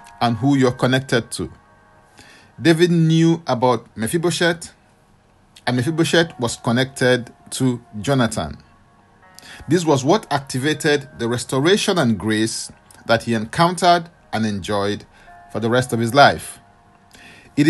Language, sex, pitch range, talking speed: English, male, 115-165 Hz, 120 wpm